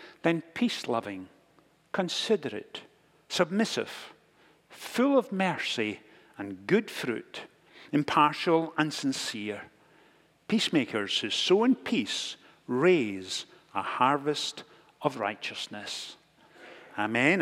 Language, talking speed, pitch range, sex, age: English, 85 wpm, 135-170 Hz, male, 60-79